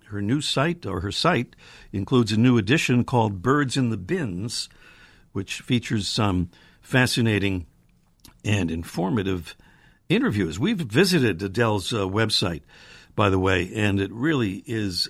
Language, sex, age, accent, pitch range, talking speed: English, male, 60-79, American, 95-140 Hz, 135 wpm